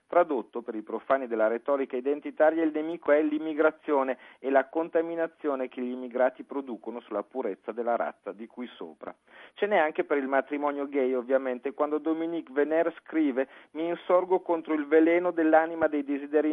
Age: 40-59